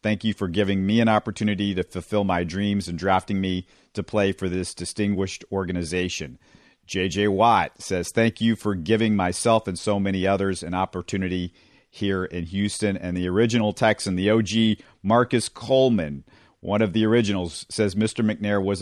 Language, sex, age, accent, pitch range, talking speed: English, male, 50-69, American, 95-115 Hz, 170 wpm